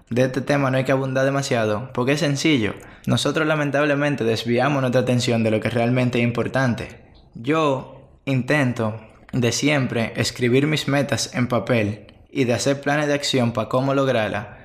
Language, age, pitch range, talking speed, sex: Spanish, 20-39, 115-145 Hz, 170 wpm, male